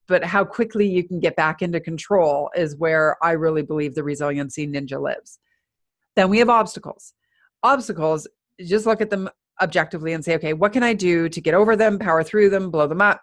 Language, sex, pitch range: English, female, 155-205 Hz